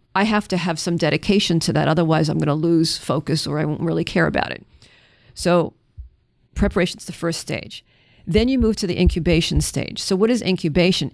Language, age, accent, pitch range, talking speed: English, 50-69, American, 165-190 Hz, 195 wpm